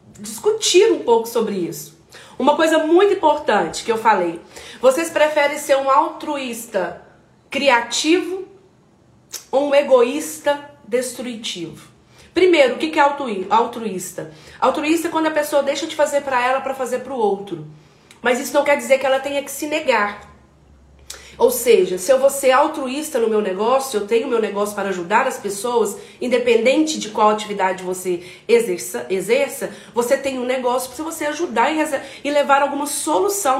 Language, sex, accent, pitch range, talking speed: Portuguese, female, Brazilian, 235-330 Hz, 160 wpm